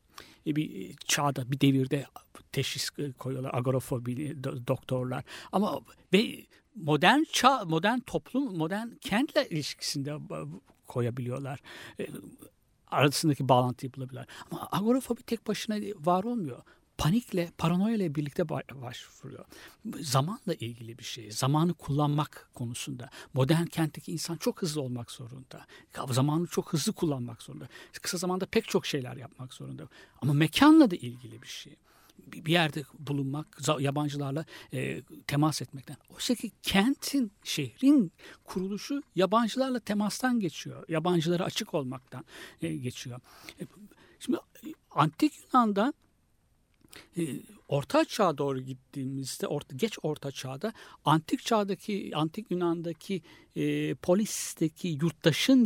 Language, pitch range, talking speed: Turkish, 135-195 Hz, 105 wpm